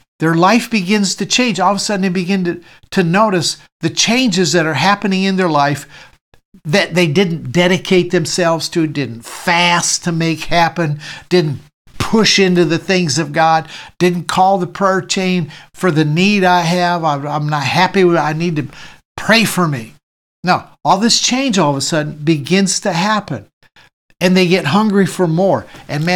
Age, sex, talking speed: 60-79, male, 185 wpm